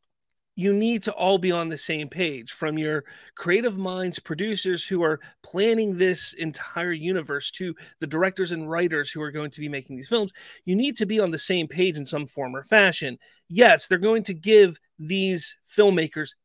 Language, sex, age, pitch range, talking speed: English, male, 30-49, 150-210 Hz, 195 wpm